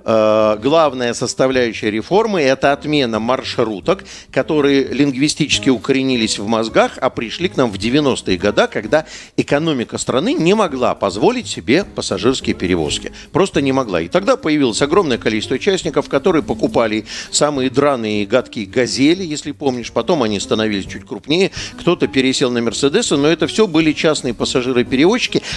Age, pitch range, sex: 50-69, 120-160 Hz, male